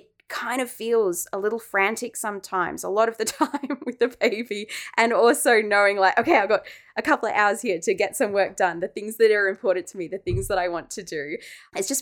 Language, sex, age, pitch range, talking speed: English, female, 20-39, 180-250 Hz, 240 wpm